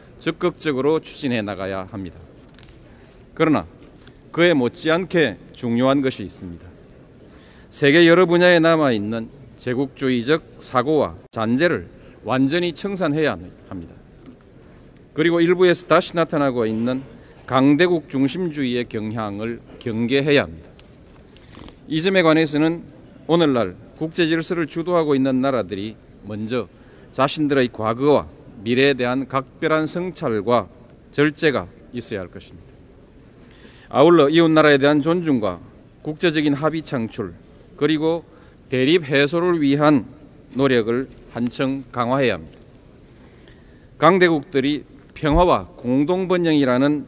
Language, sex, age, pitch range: Korean, male, 40-59, 120-160 Hz